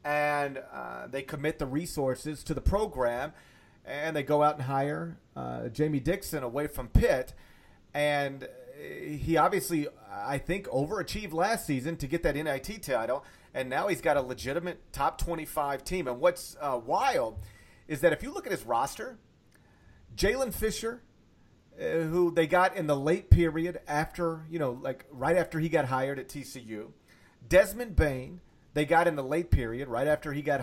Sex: male